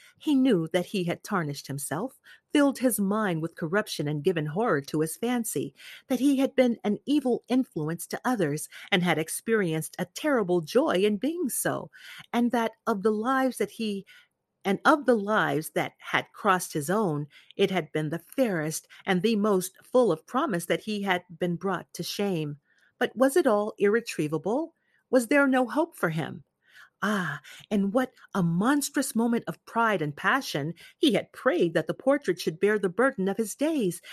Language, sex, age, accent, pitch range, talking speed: English, female, 40-59, American, 175-260 Hz, 180 wpm